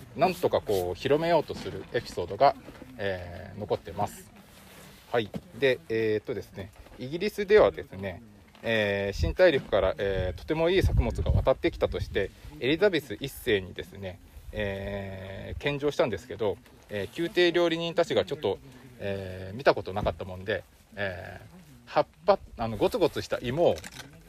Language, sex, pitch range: Japanese, male, 100-170 Hz